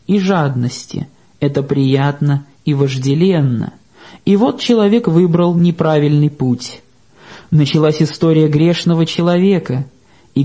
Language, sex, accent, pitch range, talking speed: Russian, male, native, 140-185 Hz, 100 wpm